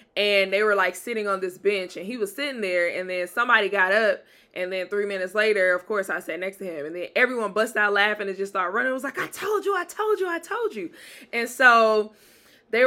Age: 20-39